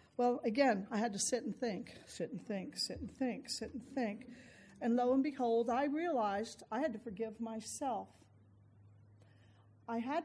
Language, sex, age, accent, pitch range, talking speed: English, female, 50-69, American, 210-280 Hz, 175 wpm